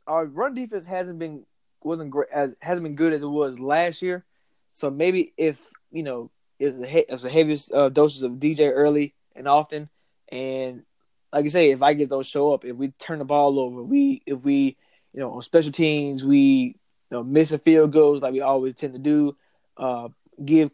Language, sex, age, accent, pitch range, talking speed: English, male, 20-39, American, 135-160 Hz, 205 wpm